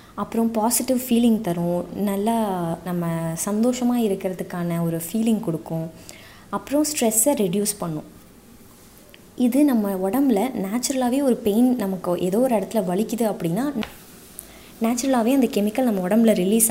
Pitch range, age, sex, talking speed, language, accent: 180-230 Hz, 20-39, female, 120 wpm, Tamil, native